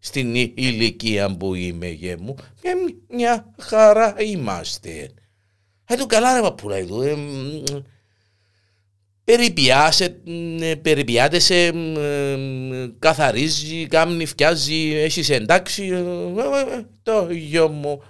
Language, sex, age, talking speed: Greek, male, 50-69, 80 wpm